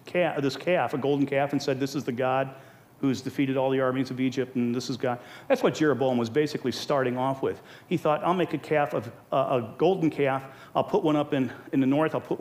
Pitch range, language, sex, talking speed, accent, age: 135-180 Hz, English, male, 245 wpm, American, 40-59